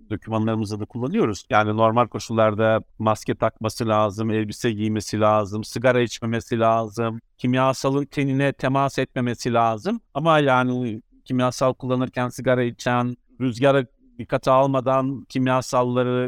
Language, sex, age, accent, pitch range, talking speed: Turkish, male, 50-69, native, 120-145 Hz, 110 wpm